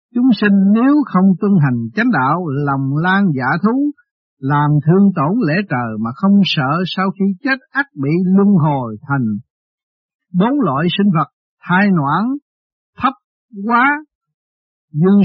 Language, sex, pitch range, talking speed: Vietnamese, male, 140-200 Hz, 145 wpm